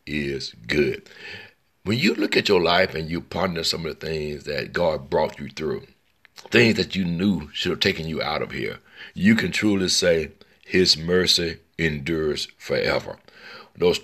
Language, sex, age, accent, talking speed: English, male, 60-79, American, 170 wpm